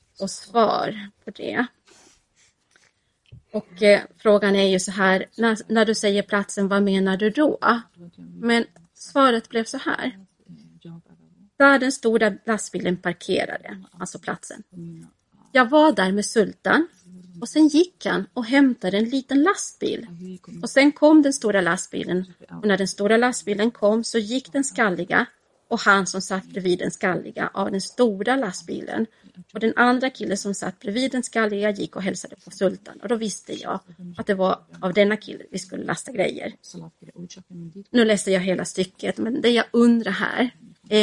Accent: native